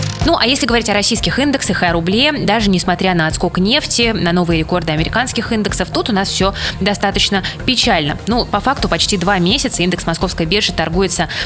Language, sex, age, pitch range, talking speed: Russian, female, 20-39, 175-210 Hz, 190 wpm